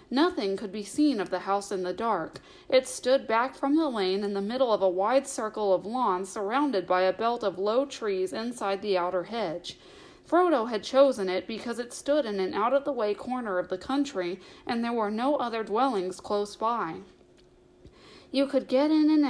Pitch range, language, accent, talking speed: 195-270 Hz, English, American, 195 wpm